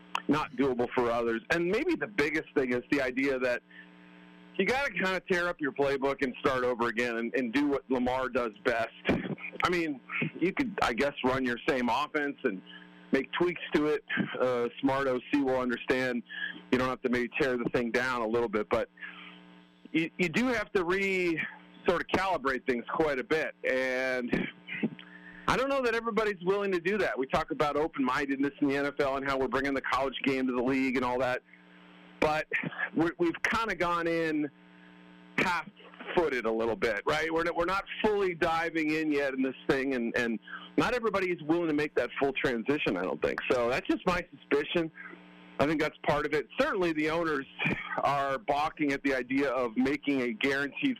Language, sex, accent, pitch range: English, male, American, 120-165 Hz